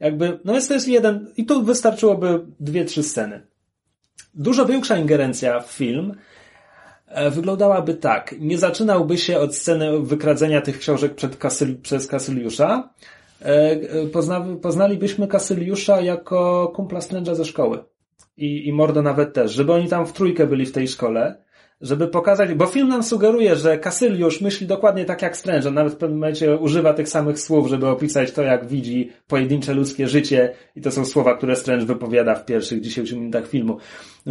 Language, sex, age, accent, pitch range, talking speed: Polish, male, 30-49, native, 140-180 Hz, 170 wpm